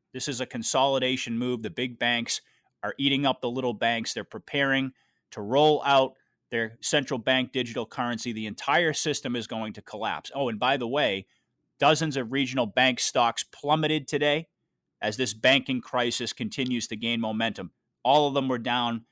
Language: English